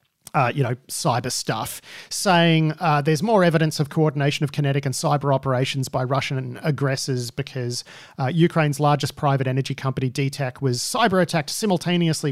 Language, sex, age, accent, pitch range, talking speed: English, male, 40-59, Australian, 135-165 Hz, 155 wpm